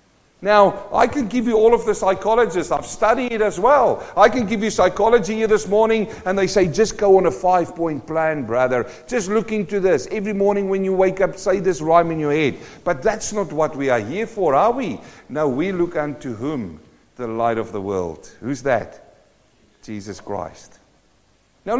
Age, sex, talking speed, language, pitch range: 50-69, male, 200 wpm, English, 175-220 Hz